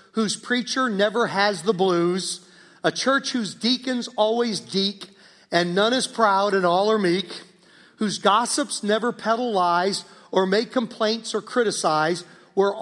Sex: male